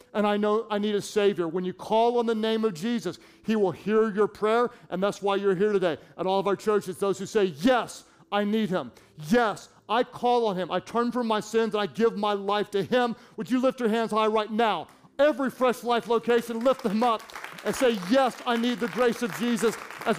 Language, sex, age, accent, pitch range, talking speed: English, male, 40-59, American, 190-235 Hz, 240 wpm